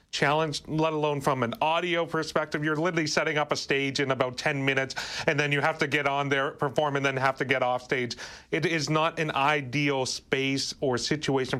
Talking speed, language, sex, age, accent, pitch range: 210 wpm, English, male, 30-49, American, 130-165 Hz